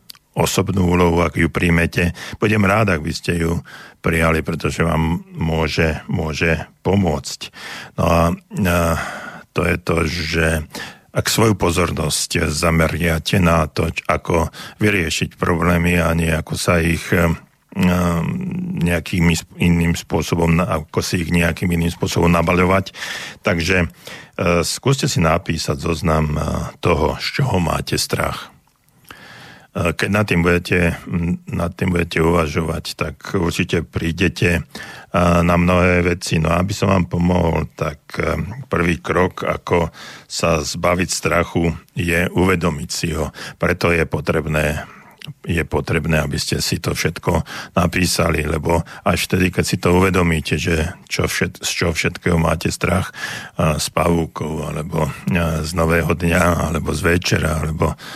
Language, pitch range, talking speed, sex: Slovak, 80-90 Hz, 130 wpm, male